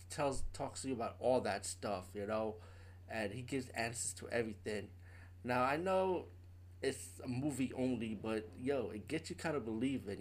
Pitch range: 90-130 Hz